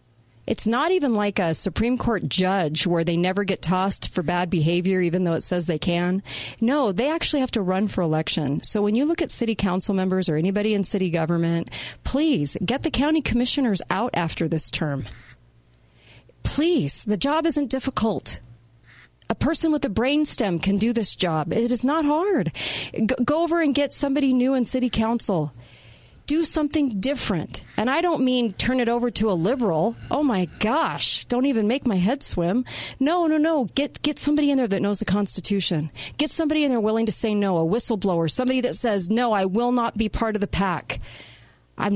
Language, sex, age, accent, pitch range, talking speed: English, female, 40-59, American, 175-255 Hz, 195 wpm